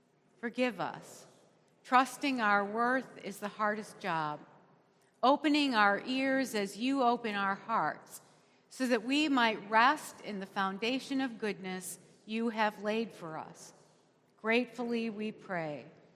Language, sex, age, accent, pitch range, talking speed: English, female, 50-69, American, 205-265 Hz, 130 wpm